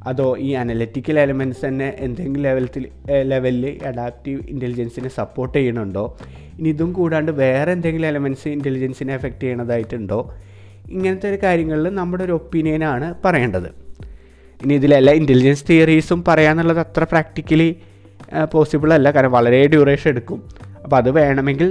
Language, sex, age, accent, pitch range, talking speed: Malayalam, male, 20-39, native, 125-155 Hz, 120 wpm